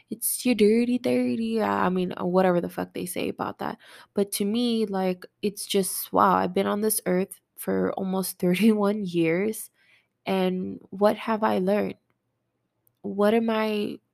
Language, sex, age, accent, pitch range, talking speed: English, female, 20-39, American, 180-205 Hz, 155 wpm